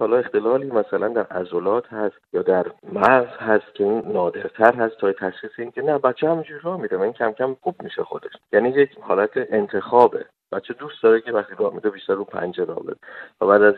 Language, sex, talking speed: Persian, male, 205 wpm